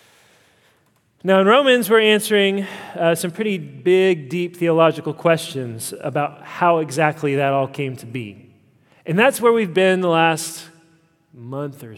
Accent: American